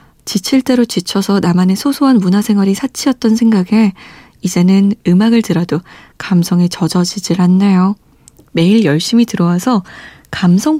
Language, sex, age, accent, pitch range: Korean, female, 20-39, native, 185-250 Hz